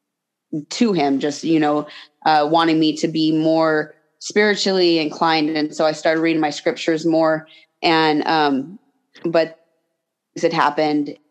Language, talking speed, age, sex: English, 140 wpm, 20-39, female